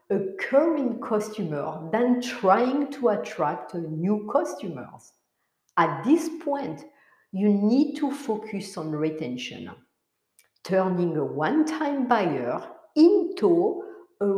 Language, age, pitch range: English, 50-69, 170-265 Hz